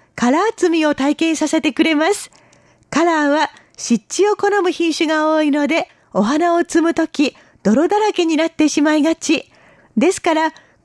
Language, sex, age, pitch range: Japanese, female, 40-59, 295-350 Hz